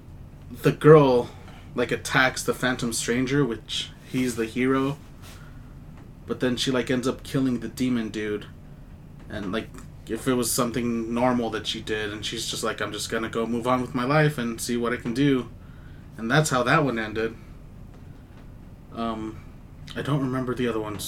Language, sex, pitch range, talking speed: English, male, 110-130 Hz, 180 wpm